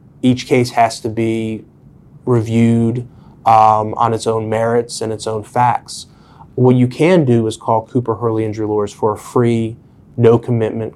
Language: English